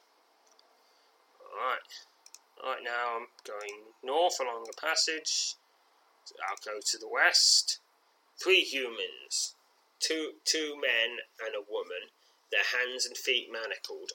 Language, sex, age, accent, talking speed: English, male, 20-39, British, 125 wpm